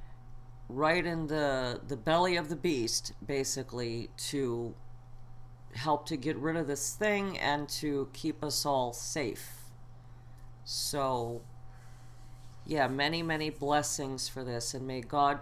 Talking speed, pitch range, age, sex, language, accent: 130 wpm, 125-150 Hz, 50-69, female, English, American